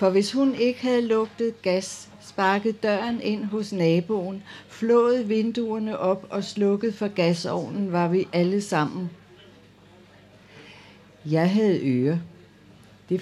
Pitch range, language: 155-200 Hz, Danish